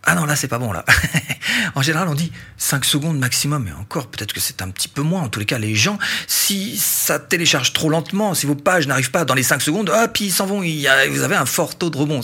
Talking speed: 265 wpm